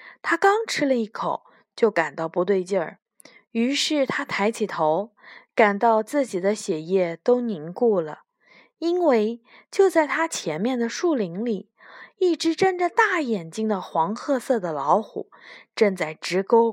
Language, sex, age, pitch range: Chinese, female, 20-39, 185-275 Hz